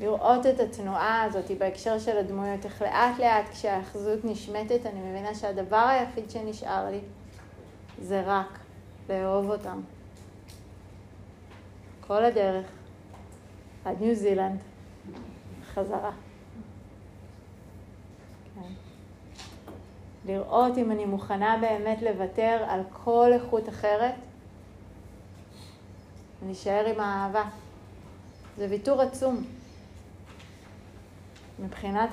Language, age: Hebrew, 30-49